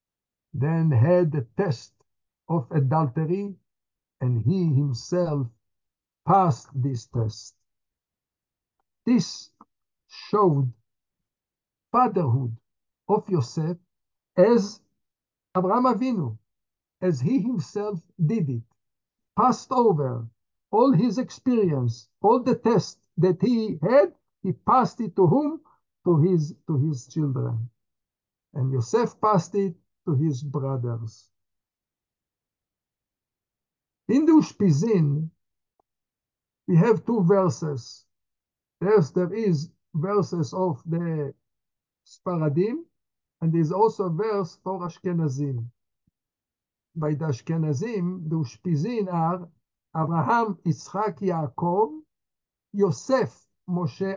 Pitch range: 130-195 Hz